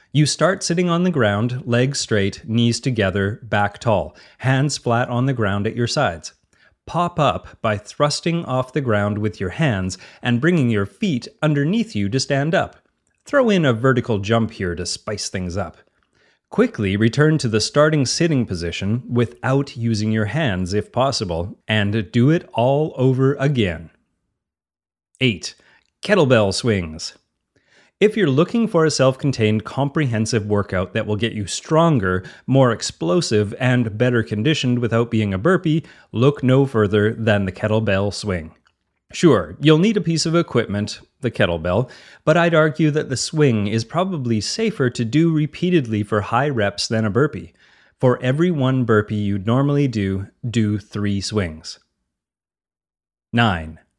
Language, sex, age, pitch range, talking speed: English, male, 30-49, 105-145 Hz, 155 wpm